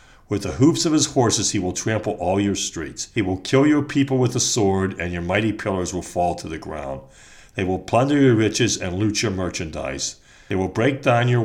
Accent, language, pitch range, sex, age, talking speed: American, English, 90-115 Hz, male, 50-69, 225 wpm